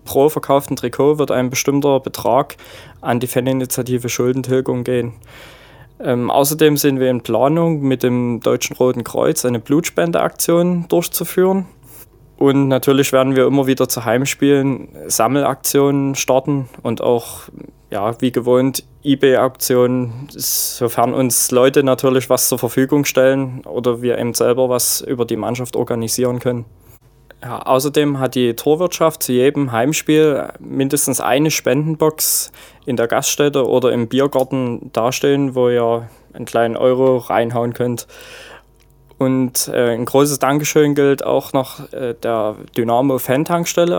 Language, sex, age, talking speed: German, male, 20-39, 130 wpm